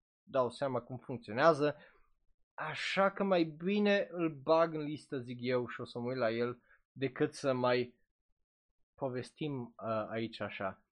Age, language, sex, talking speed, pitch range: 20-39, Romanian, male, 155 wpm, 125-170 Hz